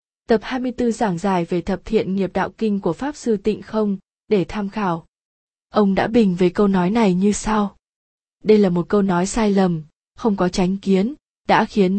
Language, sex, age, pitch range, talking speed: Vietnamese, female, 20-39, 185-225 Hz, 200 wpm